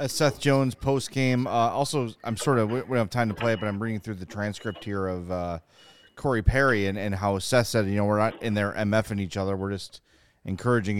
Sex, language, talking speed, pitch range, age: male, English, 235 wpm, 100-115 Hz, 30-49